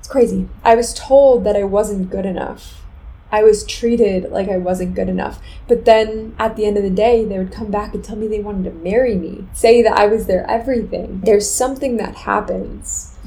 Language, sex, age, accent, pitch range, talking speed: English, female, 20-39, American, 195-220 Hz, 215 wpm